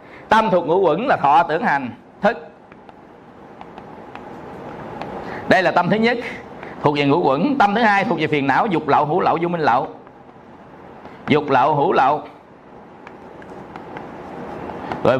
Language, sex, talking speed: Vietnamese, male, 145 wpm